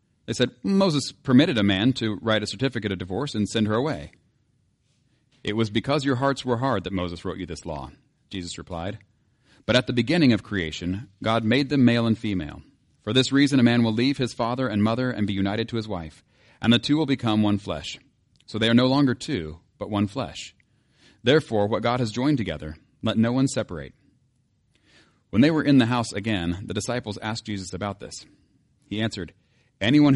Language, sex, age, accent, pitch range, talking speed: English, male, 40-59, American, 100-125 Hz, 205 wpm